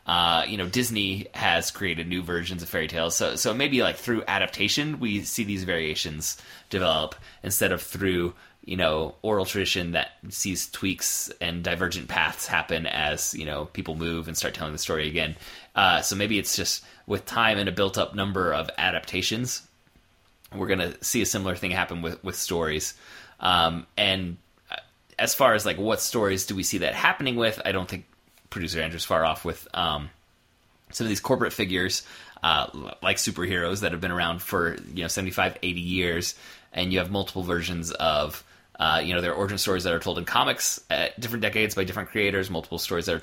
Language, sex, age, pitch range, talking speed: English, male, 20-39, 80-100 Hz, 195 wpm